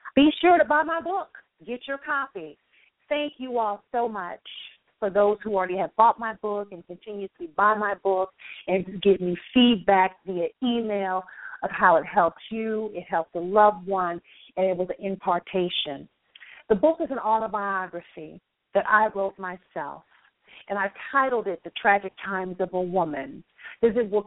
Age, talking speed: 40-59, 175 wpm